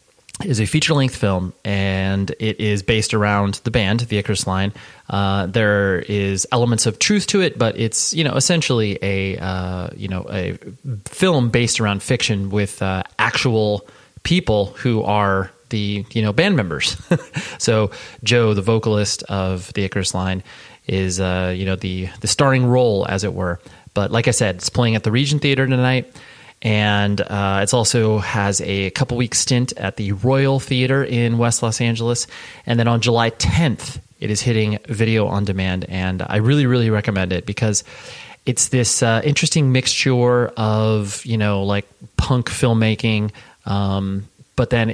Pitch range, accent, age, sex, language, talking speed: 100-125 Hz, American, 30-49, male, English, 165 wpm